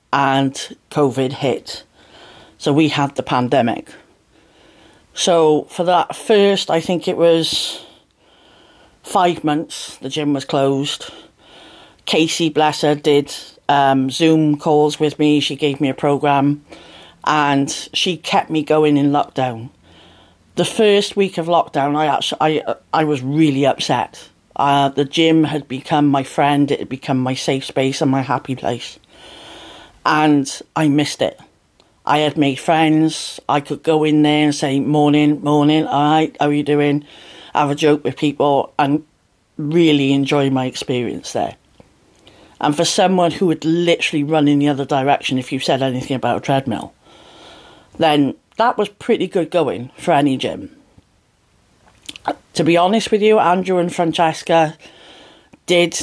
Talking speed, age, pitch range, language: 150 wpm, 40-59, 140-160 Hz, English